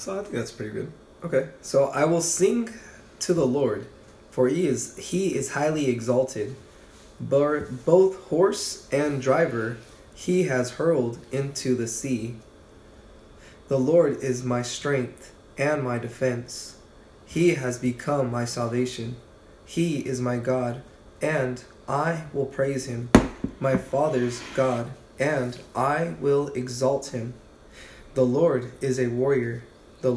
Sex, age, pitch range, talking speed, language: male, 20-39, 120-140 Hz, 135 wpm, English